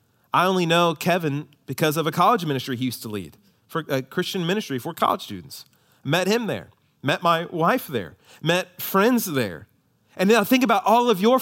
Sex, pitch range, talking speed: male, 150-220 Hz, 190 wpm